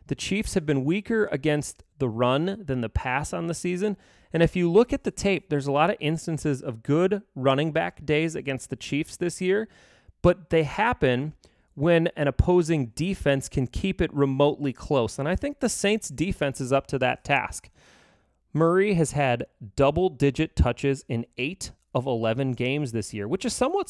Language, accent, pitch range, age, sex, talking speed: English, American, 130-180 Hz, 30-49, male, 185 wpm